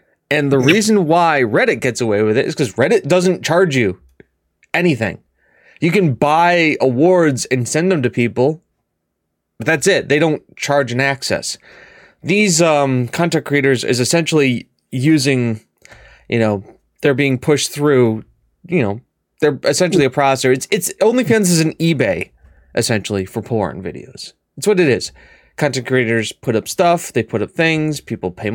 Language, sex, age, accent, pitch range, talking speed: English, male, 20-39, American, 115-160 Hz, 160 wpm